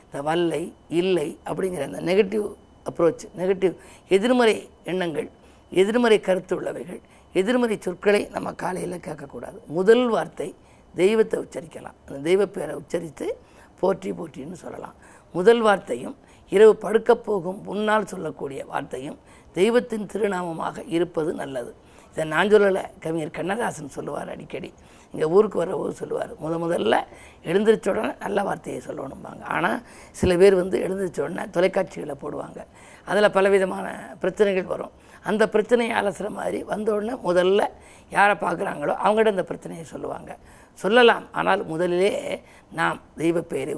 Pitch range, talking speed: 180-220 Hz, 120 wpm